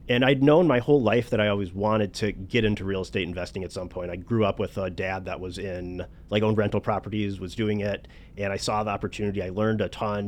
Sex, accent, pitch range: male, American, 95-120 Hz